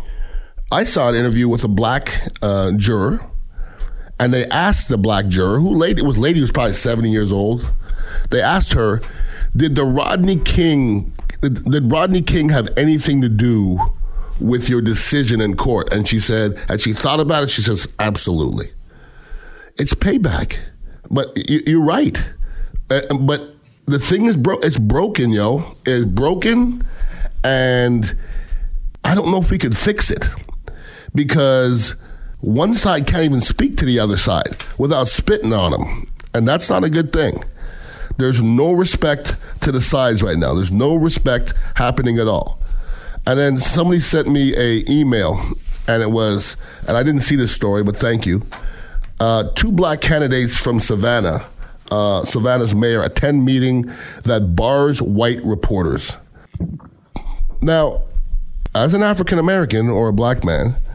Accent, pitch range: American, 105-145 Hz